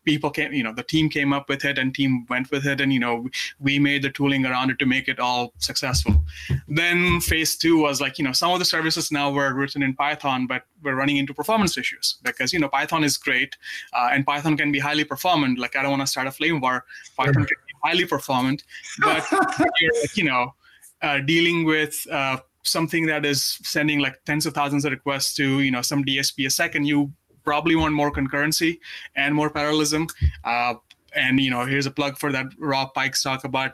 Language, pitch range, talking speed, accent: English, 130-150 Hz, 220 wpm, Indian